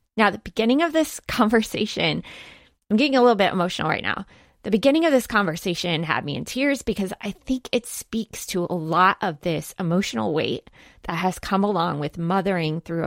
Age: 20-39